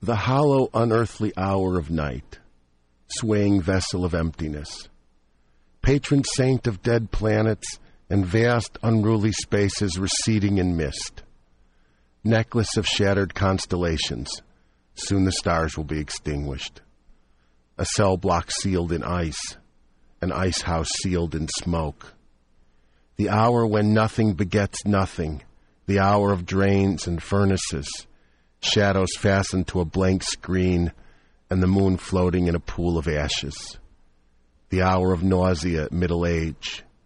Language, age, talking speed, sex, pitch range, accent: English, 50-69, 125 wpm, male, 70-95 Hz, American